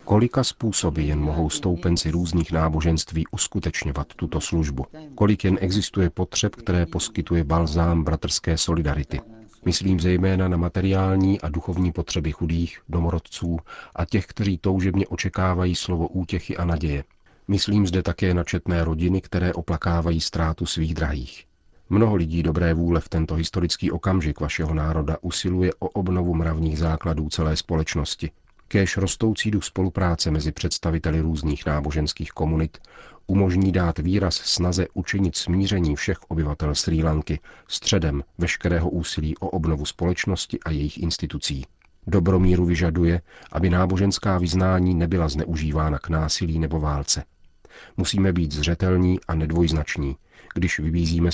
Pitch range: 80-95 Hz